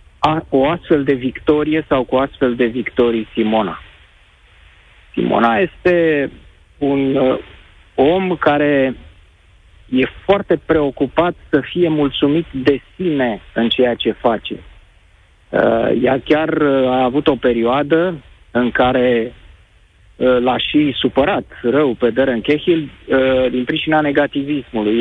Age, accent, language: 30-49, native, Romanian